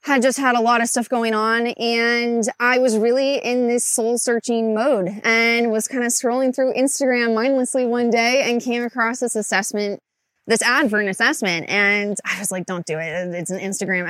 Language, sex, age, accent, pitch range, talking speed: English, female, 20-39, American, 190-240 Hz, 205 wpm